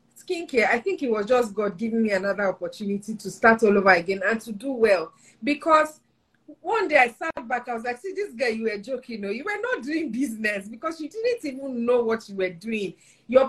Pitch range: 200-260 Hz